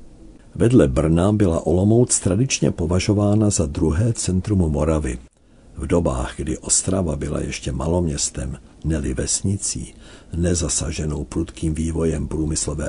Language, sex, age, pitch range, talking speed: Czech, male, 60-79, 80-100 Hz, 105 wpm